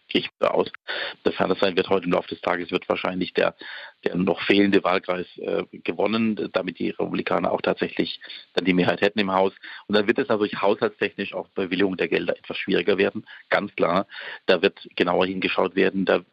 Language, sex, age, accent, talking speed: German, male, 40-59, German, 195 wpm